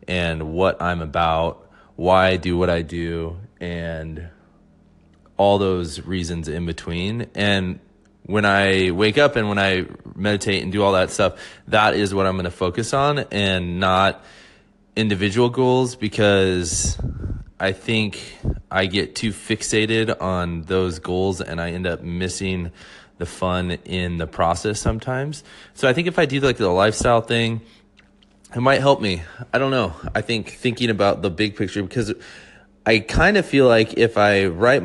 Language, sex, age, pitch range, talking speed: English, male, 20-39, 90-110 Hz, 165 wpm